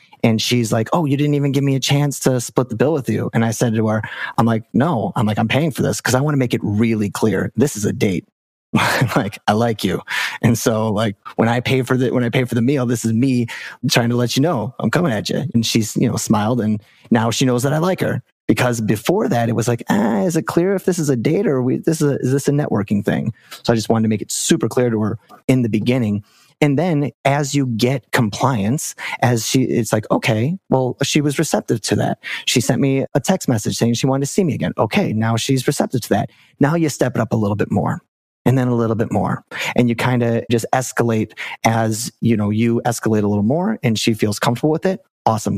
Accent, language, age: American, English, 30-49